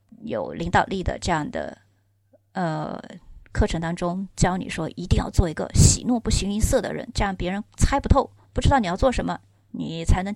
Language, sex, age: Chinese, female, 30-49